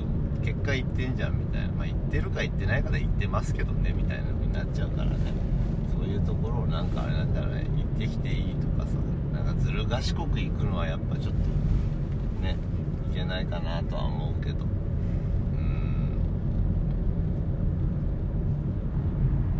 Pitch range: 80-105 Hz